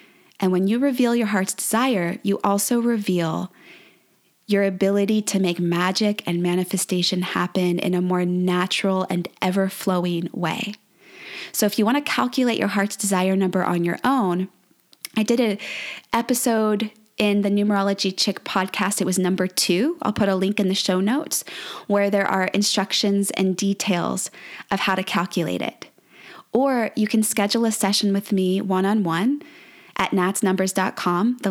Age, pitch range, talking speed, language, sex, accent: 20-39, 185-220 Hz, 160 wpm, English, female, American